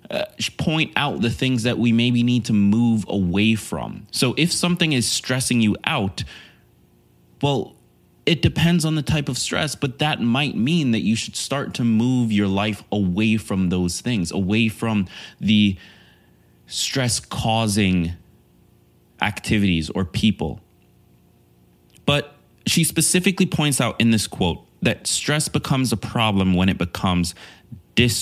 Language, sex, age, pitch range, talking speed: English, male, 20-39, 90-120 Hz, 145 wpm